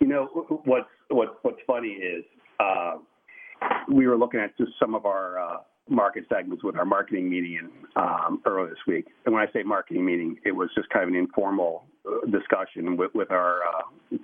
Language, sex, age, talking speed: English, male, 40-59, 185 wpm